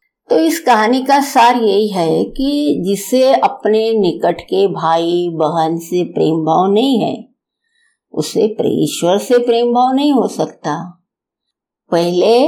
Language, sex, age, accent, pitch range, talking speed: Hindi, female, 50-69, native, 175-255 Hz, 135 wpm